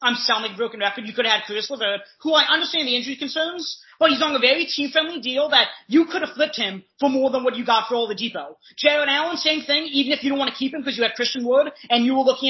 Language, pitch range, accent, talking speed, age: English, 220-285 Hz, American, 290 wpm, 30-49